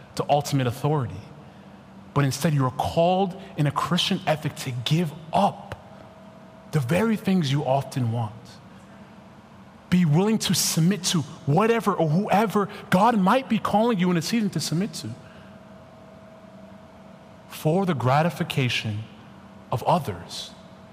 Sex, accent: male, American